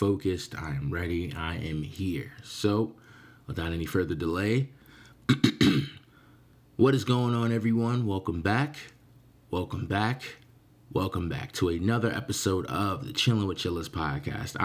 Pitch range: 85-120 Hz